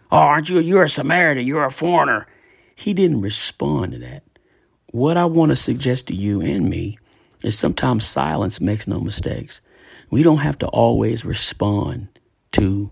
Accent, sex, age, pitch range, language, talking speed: American, male, 40-59, 100-125 Hz, English, 165 wpm